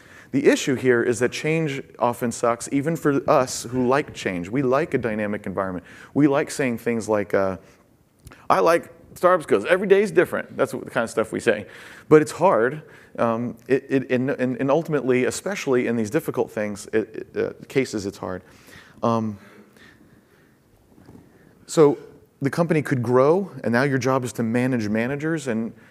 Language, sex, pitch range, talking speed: English, male, 110-145 Hz, 175 wpm